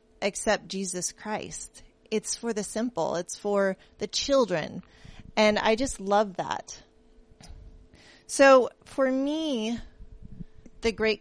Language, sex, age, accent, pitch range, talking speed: English, female, 30-49, American, 180-220 Hz, 110 wpm